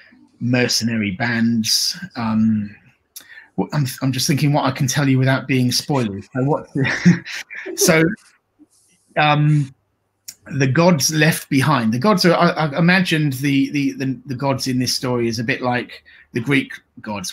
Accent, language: British, English